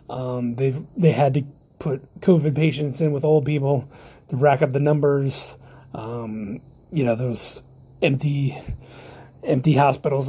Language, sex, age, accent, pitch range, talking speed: English, male, 30-49, American, 130-160 Hz, 140 wpm